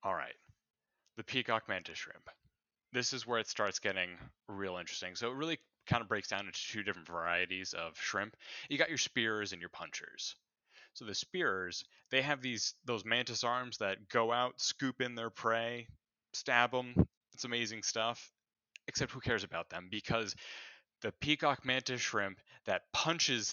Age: 30-49